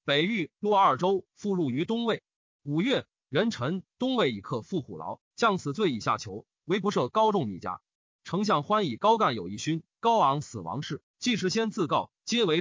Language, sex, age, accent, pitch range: Chinese, male, 30-49, native, 145-220 Hz